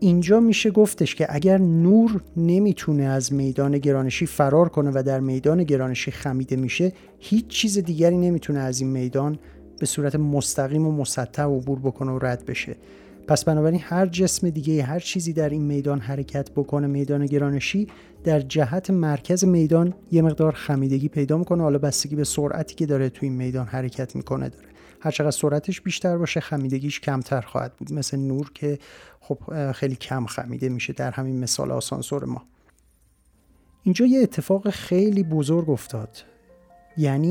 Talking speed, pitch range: 160 wpm, 135-175 Hz